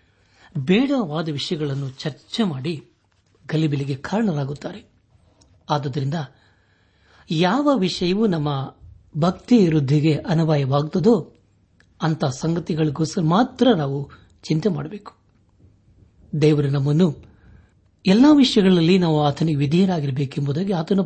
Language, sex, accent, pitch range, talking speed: Kannada, male, native, 110-175 Hz, 75 wpm